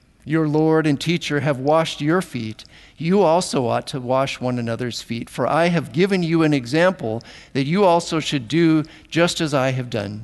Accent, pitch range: American, 115-160 Hz